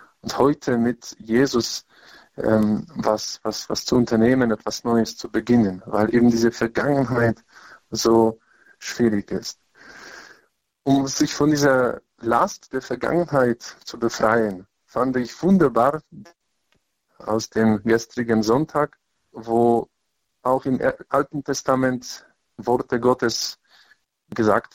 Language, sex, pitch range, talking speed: German, male, 110-135 Hz, 110 wpm